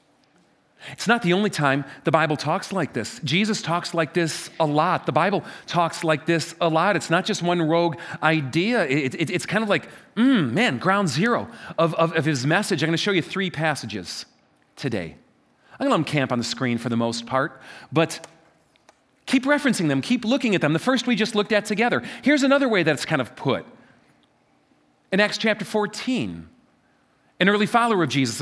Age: 40-59